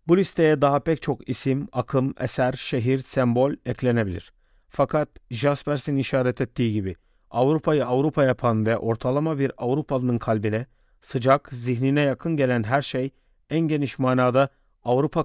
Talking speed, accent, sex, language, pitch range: 135 wpm, native, male, Turkish, 125-145 Hz